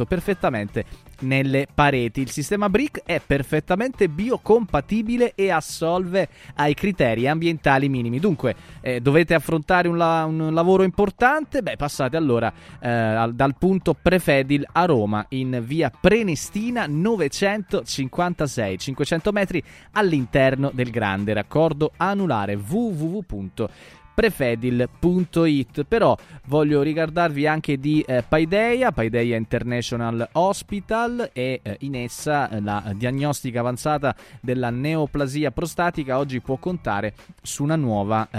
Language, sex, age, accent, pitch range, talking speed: Italian, male, 20-39, native, 125-170 Hz, 110 wpm